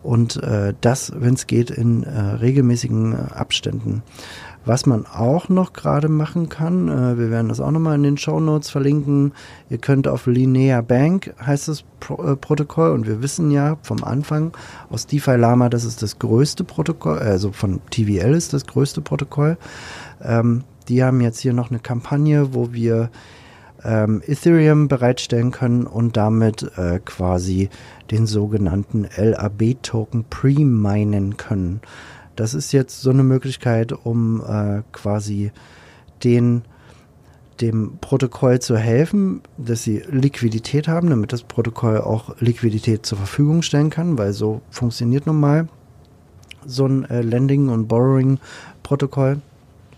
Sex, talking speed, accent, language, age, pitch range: male, 145 wpm, German, German, 40-59, 110-140 Hz